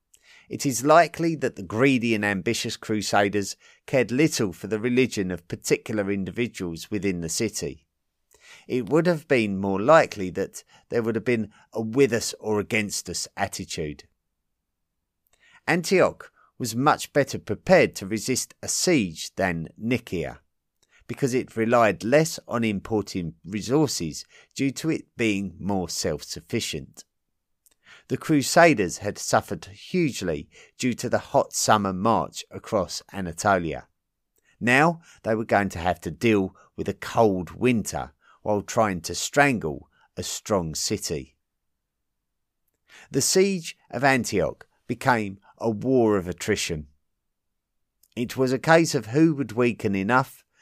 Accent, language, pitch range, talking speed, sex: British, English, 95-130 Hz, 135 wpm, male